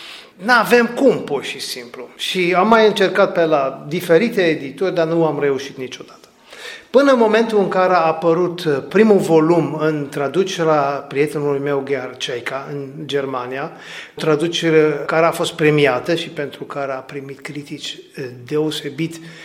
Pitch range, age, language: 145-185 Hz, 40-59, Romanian